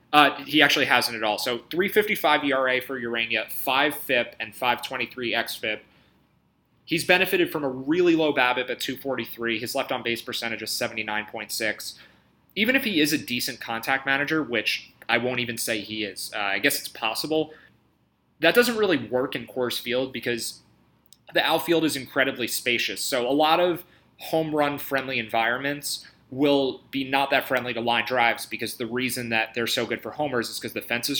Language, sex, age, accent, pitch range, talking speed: English, male, 30-49, American, 115-145 Hz, 175 wpm